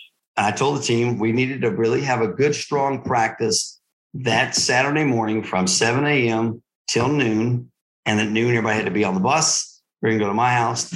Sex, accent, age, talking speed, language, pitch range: male, American, 50-69, 210 wpm, English, 105-130 Hz